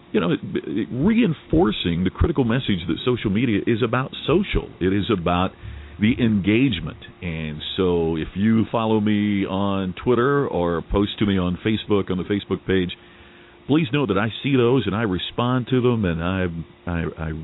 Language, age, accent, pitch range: English, 50-69, American, 85-120 Hz